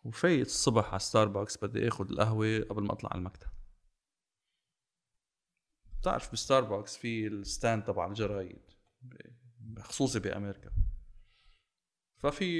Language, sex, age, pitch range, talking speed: Arabic, male, 30-49, 95-120 Hz, 100 wpm